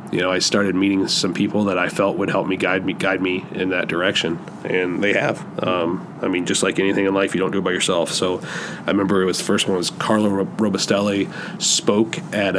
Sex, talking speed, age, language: male, 240 wpm, 30-49, English